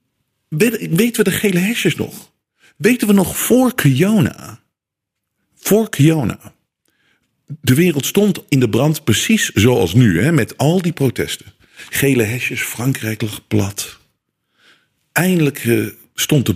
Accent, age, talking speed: Dutch, 50-69, 135 wpm